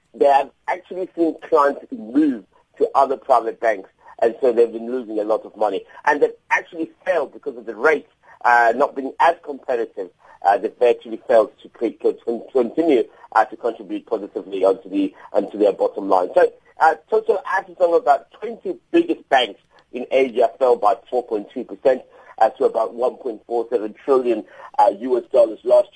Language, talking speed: English, 165 wpm